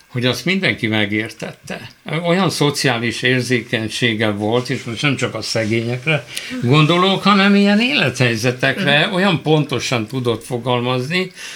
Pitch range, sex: 115-155 Hz, male